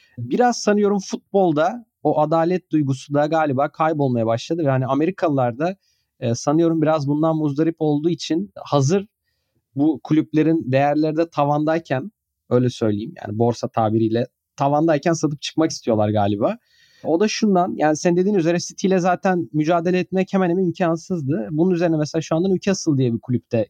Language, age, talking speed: Turkish, 30-49, 145 wpm